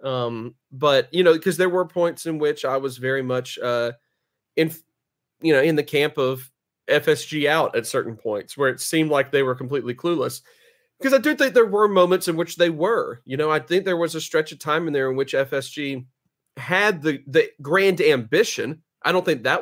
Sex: male